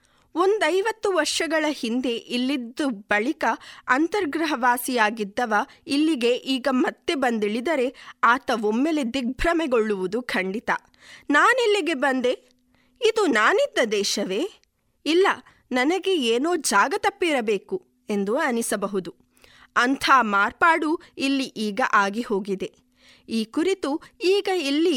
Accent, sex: native, female